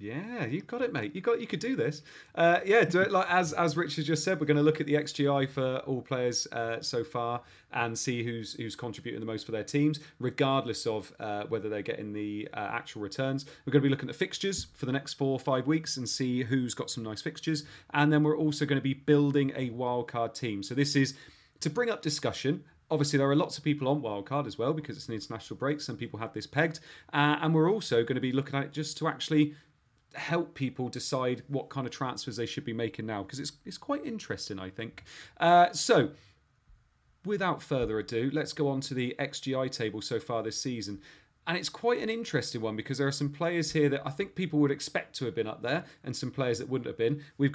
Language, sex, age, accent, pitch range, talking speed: English, male, 30-49, British, 125-155 Hz, 245 wpm